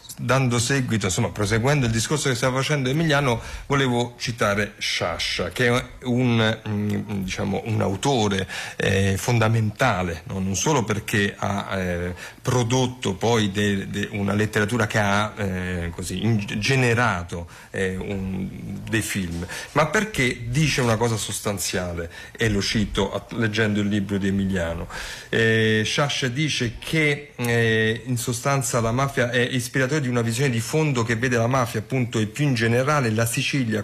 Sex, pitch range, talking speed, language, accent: male, 100-130 Hz, 145 wpm, Italian, native